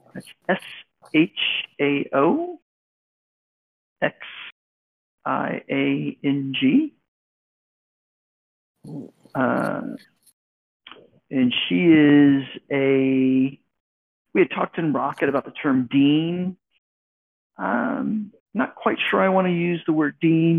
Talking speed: 75 wpm